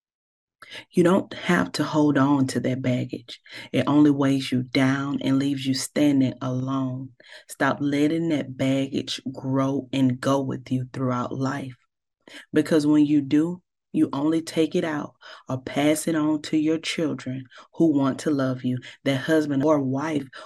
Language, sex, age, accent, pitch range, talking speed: English, female, 30-49, American, 130-155 Hz, 160 wpm